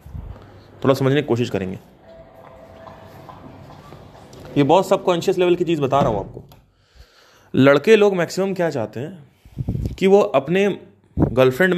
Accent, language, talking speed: native, Hindi, 125 wpm